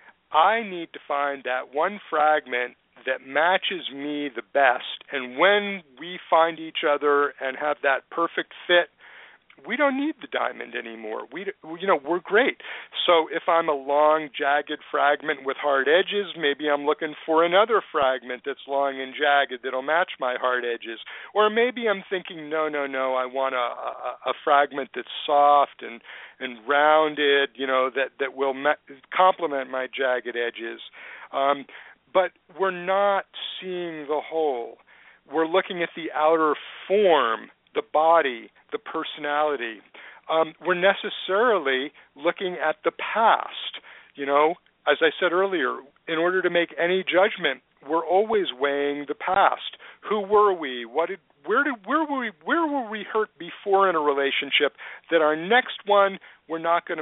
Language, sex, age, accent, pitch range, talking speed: English, male, 50-69, American, 140-185 Hz, 165 wpm